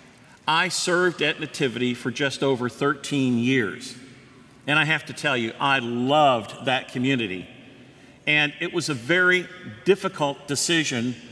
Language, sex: English, male